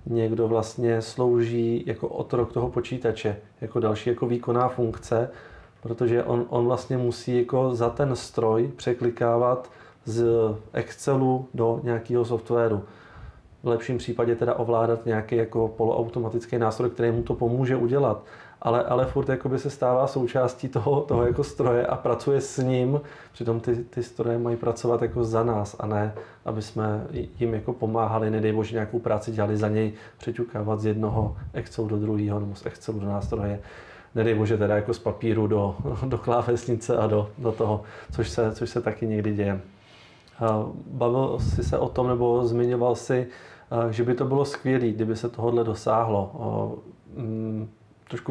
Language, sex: Czech, male